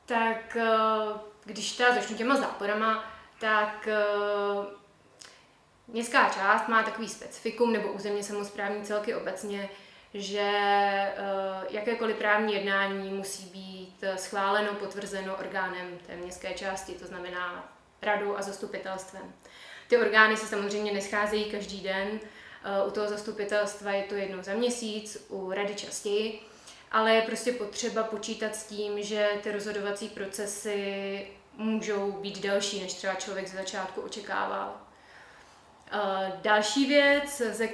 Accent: native